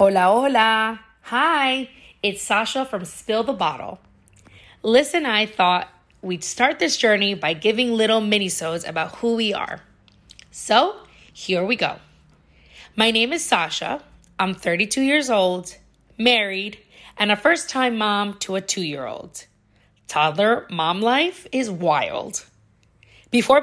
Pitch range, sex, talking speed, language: 180-235 Hz, female, 125 wpm, English